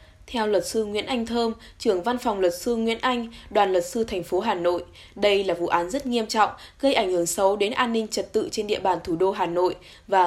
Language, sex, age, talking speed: Vietnamese, female, 10-29, 255 wpm